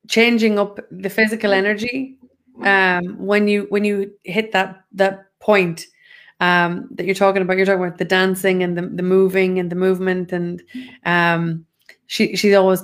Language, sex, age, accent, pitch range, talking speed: English, female, 20-39, Irish, 175-195 Hz, 170 wpm